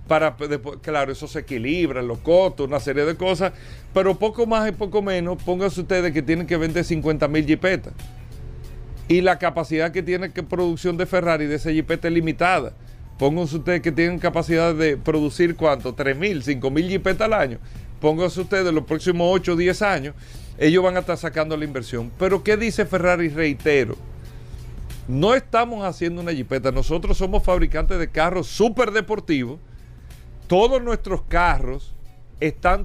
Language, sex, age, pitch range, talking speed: Spanish, male, 40-59, 145-200 Hz, 165 wpm